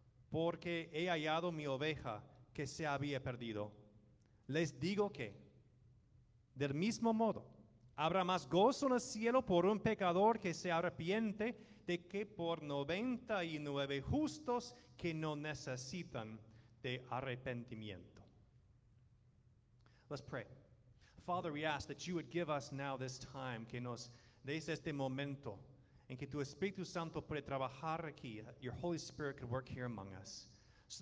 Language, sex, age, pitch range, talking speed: English, male, 40-59, 120-160 Hz, 130 wpm